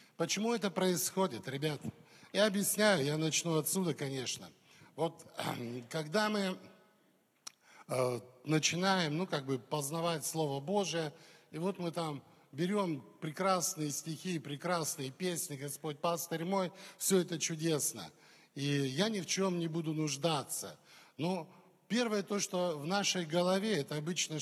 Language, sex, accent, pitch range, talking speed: Russian, male, native, 150-185 Hz, 130 wpm